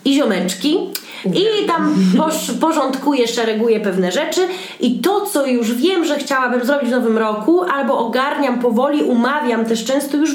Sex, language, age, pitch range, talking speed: female, Polish, 20-39, 210-270 Hz, 150 wpm